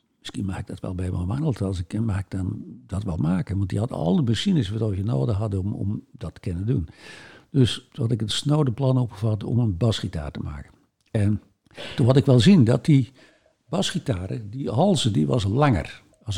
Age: 60-79